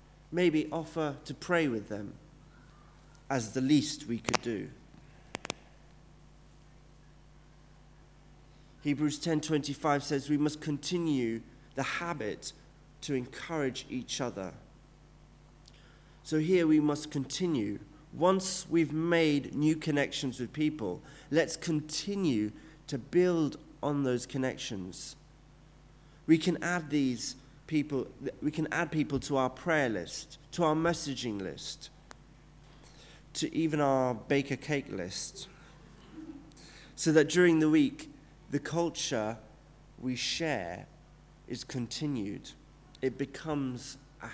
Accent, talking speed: British, 110 wpm